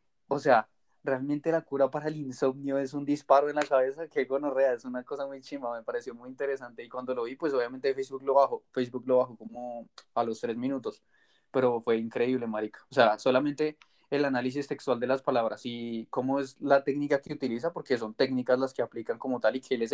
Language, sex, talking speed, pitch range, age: Spanish, male, 225 wpm, 125-140 Hz, 20-39